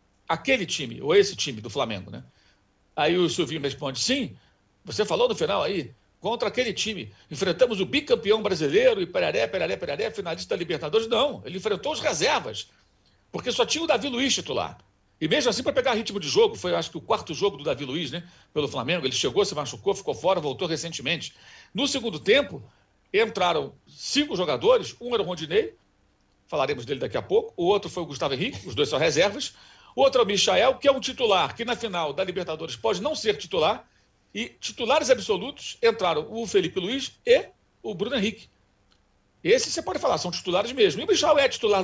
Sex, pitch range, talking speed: male, 170-285 Hz, 195 wpm